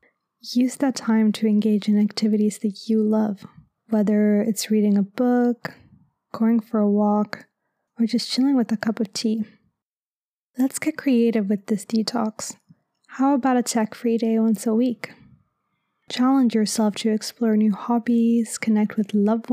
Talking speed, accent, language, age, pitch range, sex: 155 wpm, American, English, 20-39, 210-235 Hz, female